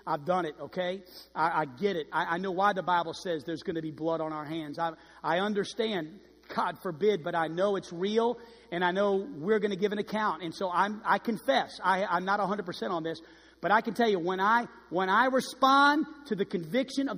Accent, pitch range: American, 170-235 Hz